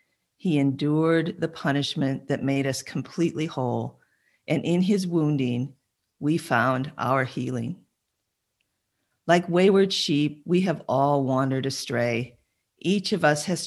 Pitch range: 130-160 Hz